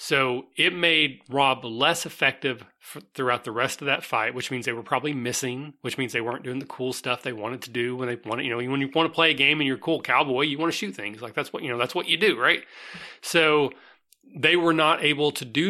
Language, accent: English, American